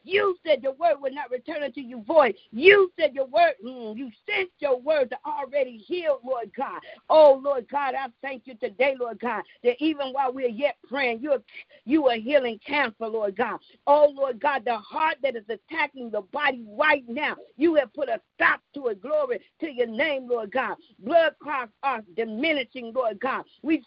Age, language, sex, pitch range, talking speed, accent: 50-69, English, female, 255-320 Hz, 200 wpm, American